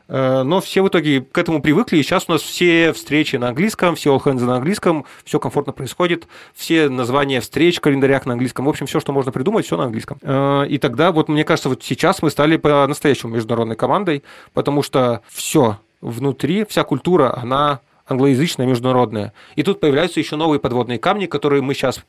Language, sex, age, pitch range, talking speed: Russian, male, 20-39, 125-155 Hz, 185 wpm